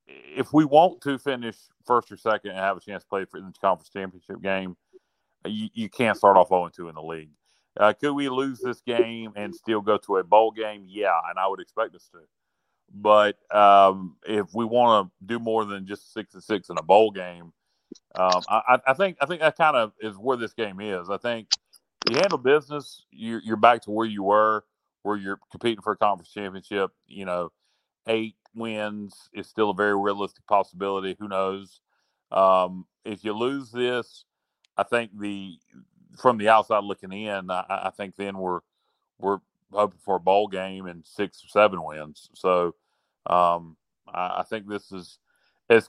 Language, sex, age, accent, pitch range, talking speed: English, male, 40-59, American, 95-115 Hz, 190 wpm